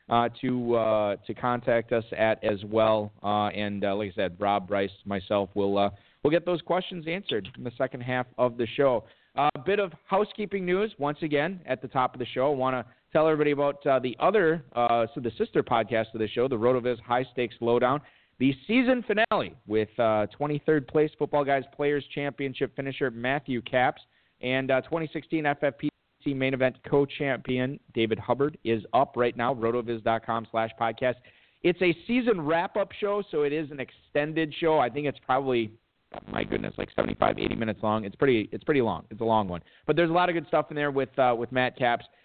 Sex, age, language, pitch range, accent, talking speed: male, 40-59, English, 115-150 Hz, American, 205 wpm